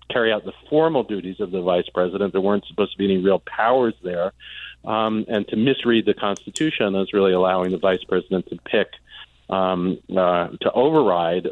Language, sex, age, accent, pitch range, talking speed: English, male, 40-59, American, 100-140 Hz, 190 wpm